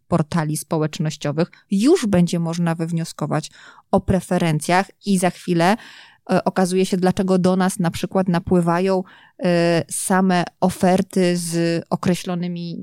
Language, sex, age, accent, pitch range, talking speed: Polish, female, 20-39, native, 175-210 Hz, 110 wpm